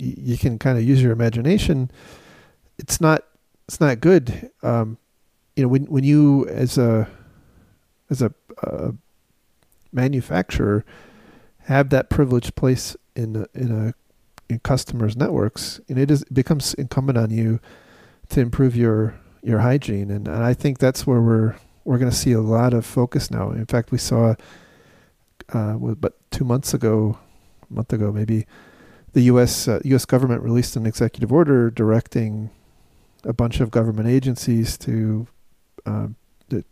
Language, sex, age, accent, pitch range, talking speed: English, male, 40-59, American, 110-130 Hz, 155 wpm